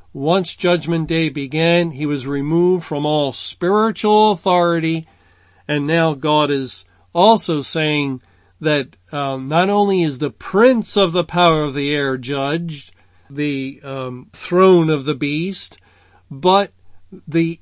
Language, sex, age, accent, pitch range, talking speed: English, male, 50-69, American, 140-175 Hz, 135 wpm